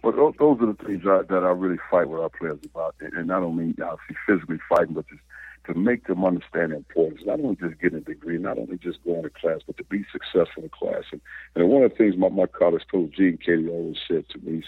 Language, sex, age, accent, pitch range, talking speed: English, male, 60-79, American, 85-95 Hz, 260 wpm